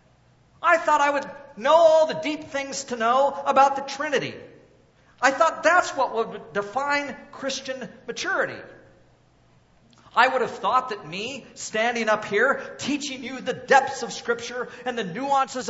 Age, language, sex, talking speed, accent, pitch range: 50-69, English, male, 155 wpm, American, 170-265 Hz